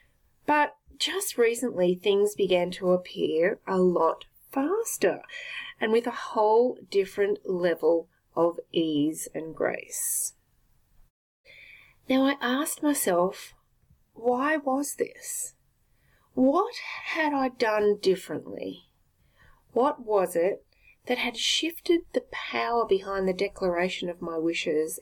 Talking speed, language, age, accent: 110 wpm, English, 30-49, Australian